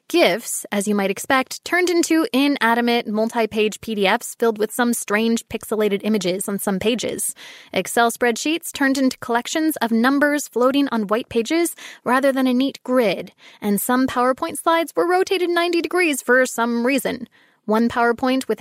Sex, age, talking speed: female, 20-39, 160 wpm